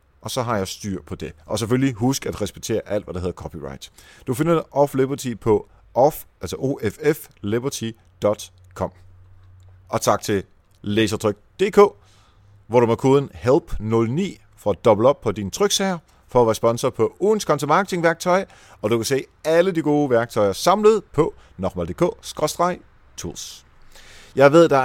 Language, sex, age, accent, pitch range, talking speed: Danish, male, 30-49, native, 100-145 Hz, 150 wpm